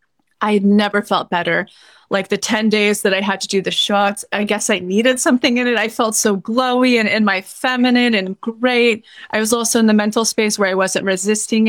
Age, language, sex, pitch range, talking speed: 30-49, English, female, 195-230 Hz, 225 wpm